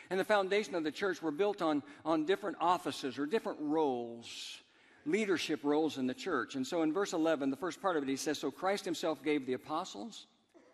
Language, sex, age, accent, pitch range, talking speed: English, male, 60-79, American, 145-220 Hz, 210 wpm